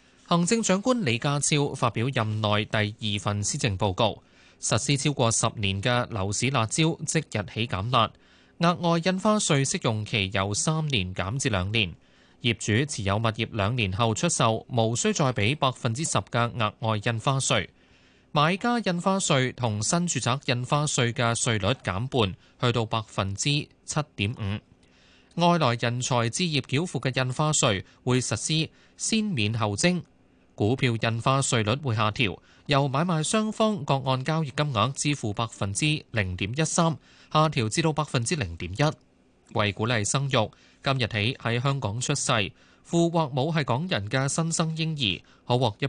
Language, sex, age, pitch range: Chinese, male, 20-39, 105-145 Hz